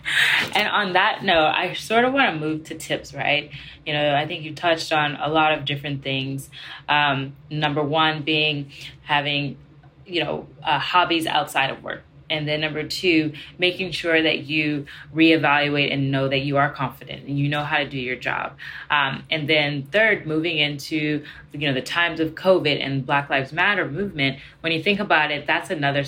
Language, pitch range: English, 140-155 Hz